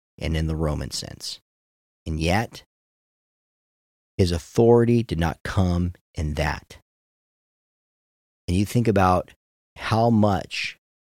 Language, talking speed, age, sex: English, 110 wpm, 40-59, male